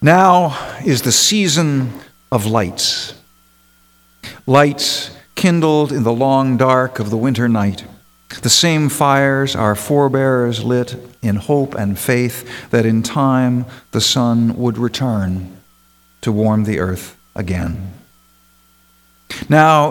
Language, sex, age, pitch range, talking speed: English, male, 50-69, 100-135 Hz, 120 wpm